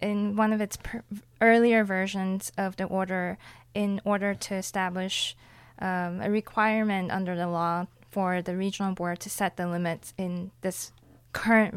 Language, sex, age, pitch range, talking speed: English, female, 20-39, 185-210 Hz, 155 wpm